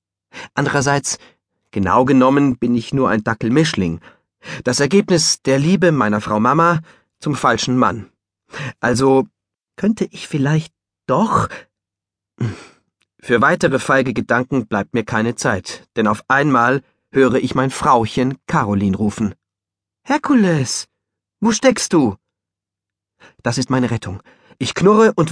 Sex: male